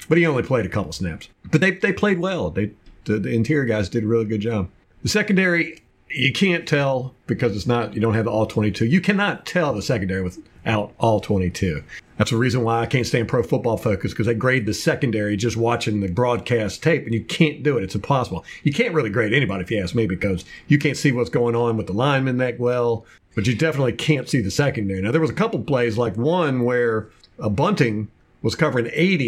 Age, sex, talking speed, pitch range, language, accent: 50-69, male, 235 wpm, 110-145 Hz, English, American